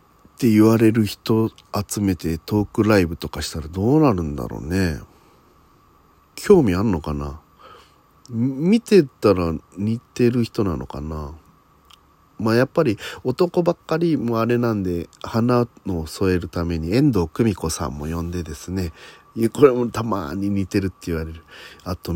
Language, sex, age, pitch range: Japanese, male, 40-59, 80-115 Hz